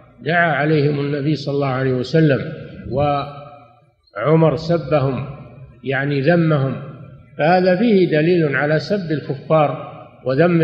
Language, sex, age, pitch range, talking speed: Arabic, male, 50-69, 140-170 Hz, 100 wpm